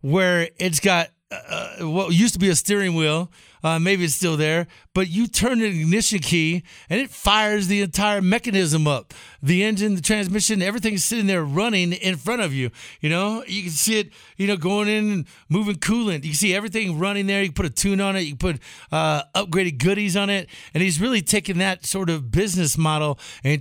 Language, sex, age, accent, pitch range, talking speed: English, male, 50-69, American, 160-195 Hz, 220 wpm